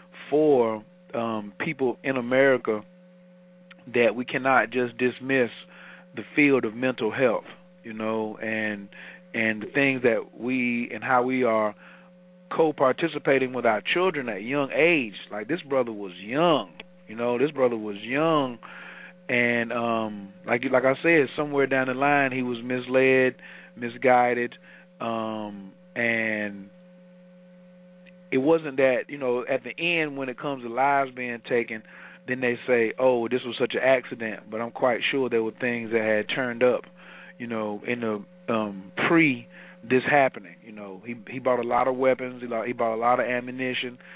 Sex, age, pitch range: male, 40-59, 115-140 Hz